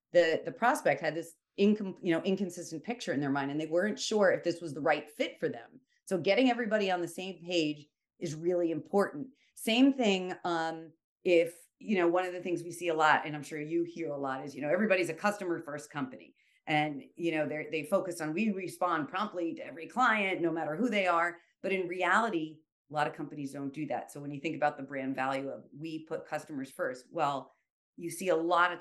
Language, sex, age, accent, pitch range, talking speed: English, female, 40-59, American, 150-190 Hz, 230 wpm